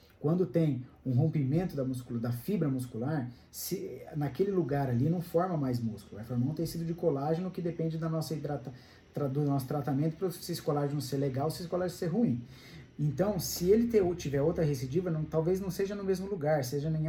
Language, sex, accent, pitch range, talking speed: Portuguese, male, Brazilian, 145-185 Hz, 215 wpm